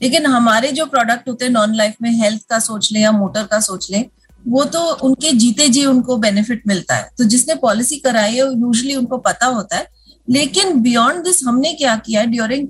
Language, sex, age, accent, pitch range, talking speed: Hindi, female, 30-49, native, 230-310 Hz, 210 wpm